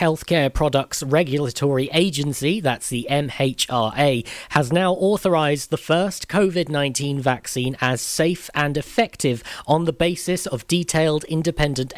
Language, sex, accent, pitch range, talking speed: English, male, British, 120-160 Hz, 120 wpm